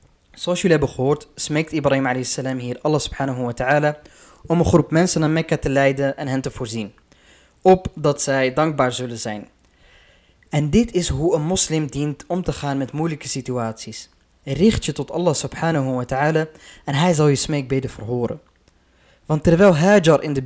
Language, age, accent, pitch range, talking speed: Dutch, 20-39, Dutch, 135-170 Hz, 180 wpm